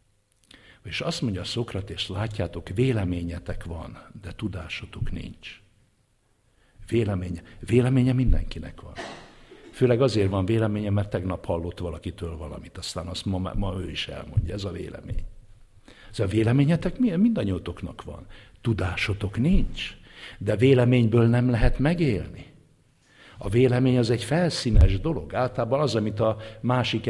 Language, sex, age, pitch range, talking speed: English, male, 60-79, 95-120 Hz, 125 wpm